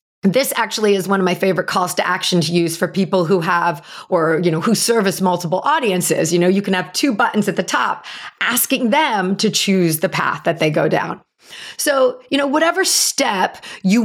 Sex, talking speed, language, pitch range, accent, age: female, 210 wpm, English, 190-255 Hz, American, 40-59